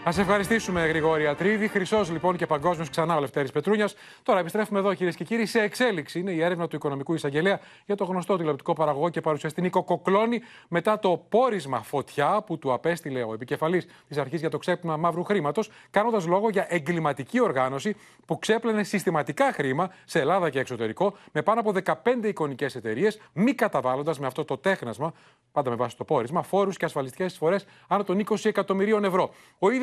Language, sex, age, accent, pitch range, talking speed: Greek, male, 30-49, native, 150-215 Hz, 180 wpm